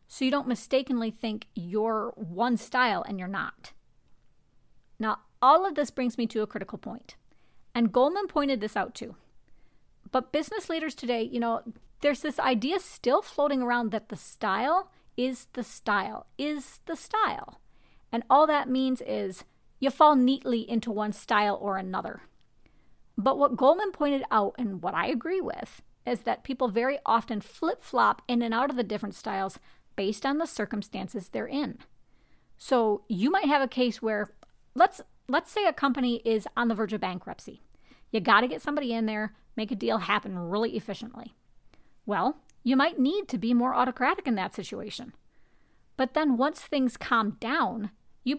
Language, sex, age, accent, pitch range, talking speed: English, female, 40-59, American, 215-275 Hz, 170 wpm